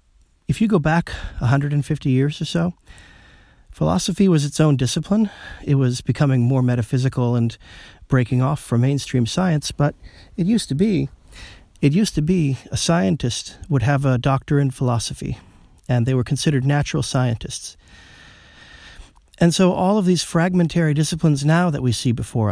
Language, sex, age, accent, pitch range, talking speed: English, male, 40-59, American, 120-155 Hz, 155 wpm